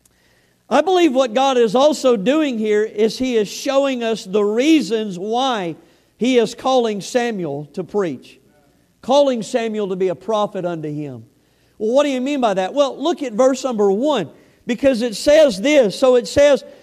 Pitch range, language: 240-300 Hz, English